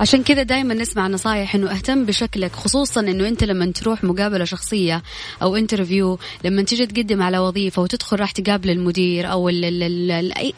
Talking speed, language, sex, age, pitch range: 180 wpm, English, female, 20-39, 185-235 Hz